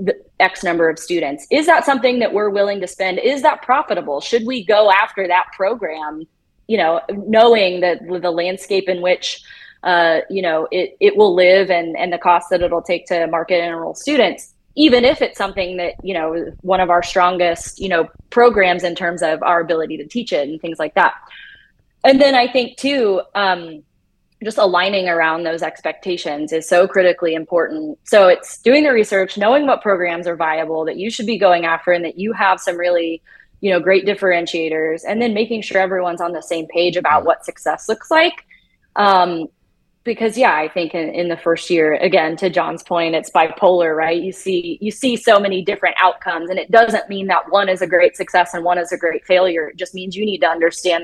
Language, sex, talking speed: English, female, 210 wpm